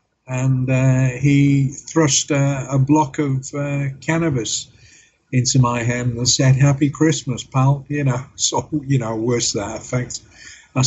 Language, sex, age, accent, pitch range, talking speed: English, male, 50-69, British, 120-140 Hz, 150 wpm